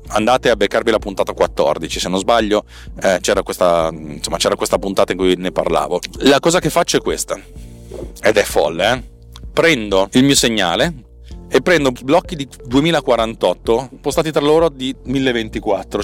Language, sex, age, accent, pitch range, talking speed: Italian, male, 30-49, native, 100-150 Hz, 155 wpm